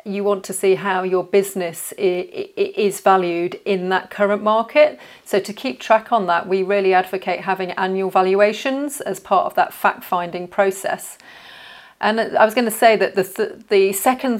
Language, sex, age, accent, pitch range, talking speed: English, female, 40-59, British, 185-210 Hz, 175 wpm